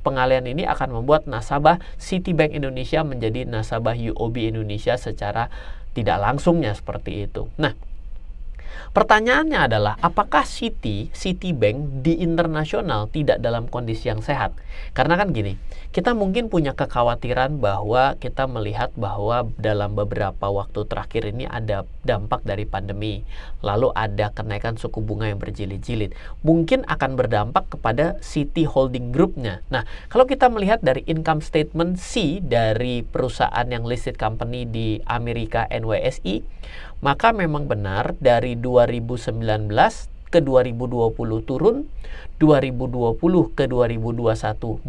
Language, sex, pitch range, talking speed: Indonesian, male, 110-150 Hz, 120 wpm